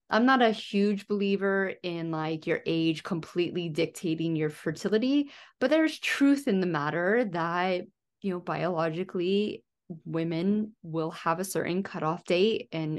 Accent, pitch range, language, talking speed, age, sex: American, 165-205 Hz, English, 145 wpm, 20-39, female